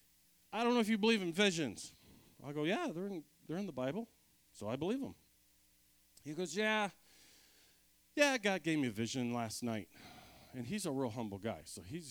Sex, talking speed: male, 200 wpm